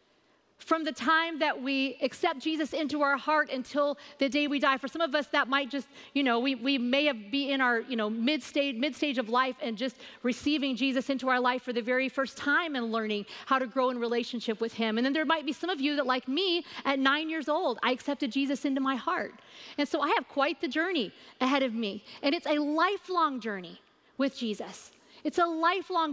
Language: English